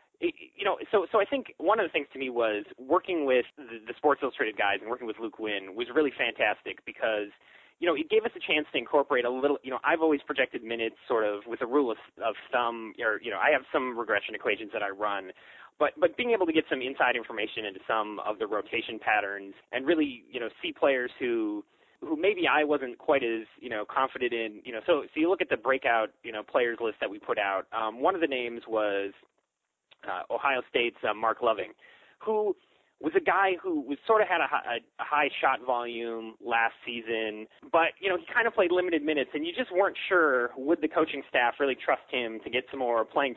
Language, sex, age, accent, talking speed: English, male, 20-39, American, 235 wpm